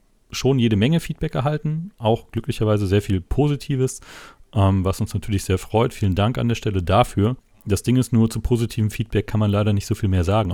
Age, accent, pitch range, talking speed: 40-59, German, 90-115 Hz, 210 wpm